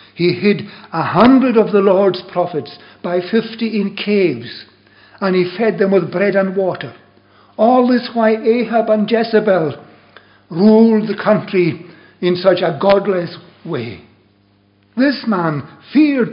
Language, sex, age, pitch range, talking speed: English, male, 60-79, 120-185 Hz, 135 wpm